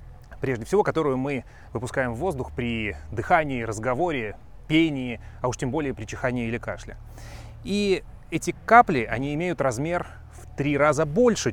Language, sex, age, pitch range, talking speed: Russian, male, 30-49, 115-155 Hz, 150 wpm